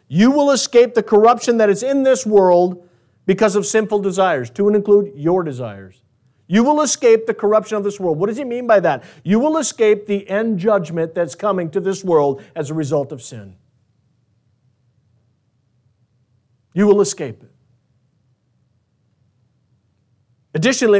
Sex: male